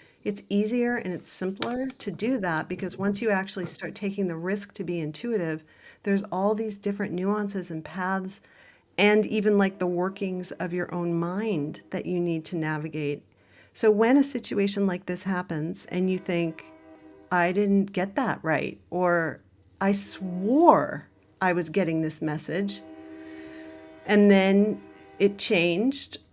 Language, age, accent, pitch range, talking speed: English, 40-59, American, 170-210 Hz, 155 wpm